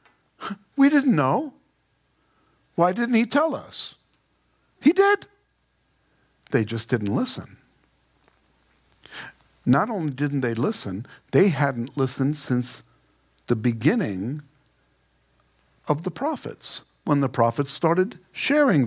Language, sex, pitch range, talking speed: English, male, 130-210 Hz, 105 wpm